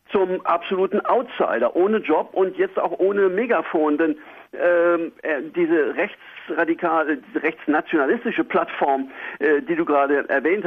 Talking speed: 120 wpm